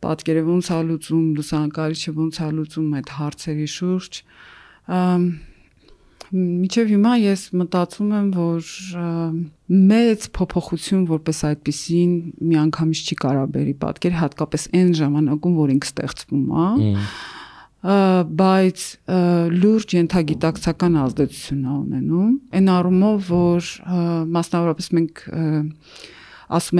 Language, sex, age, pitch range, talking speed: English, female, 40-59, 155-185 Hz, 50 wpm